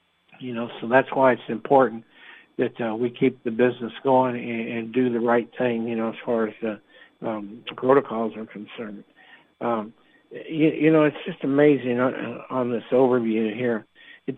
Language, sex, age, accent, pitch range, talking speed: English, male, 60-79, American, 115-135 Hz, 185 wpm